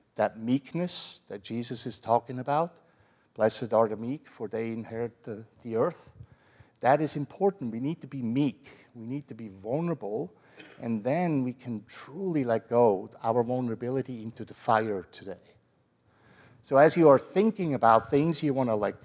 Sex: male